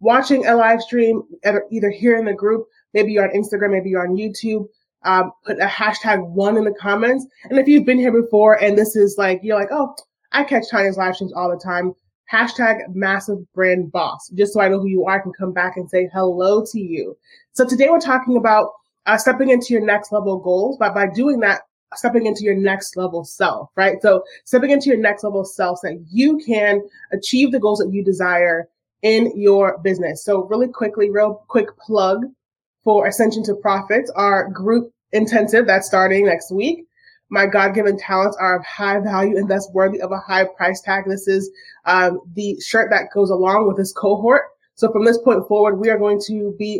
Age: 30-49